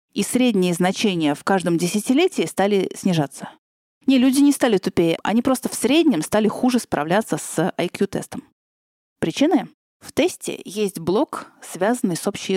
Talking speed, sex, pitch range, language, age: 145 wpm, female, 170-245 Hz, Russian, 30-49